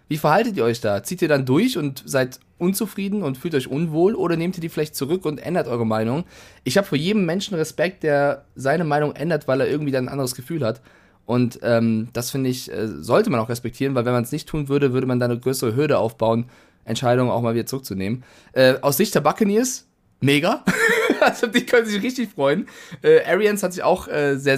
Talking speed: 225 wpm